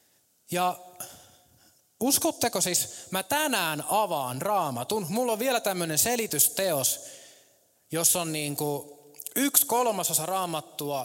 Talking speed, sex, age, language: 105 wpm, male, 20-39, Finnish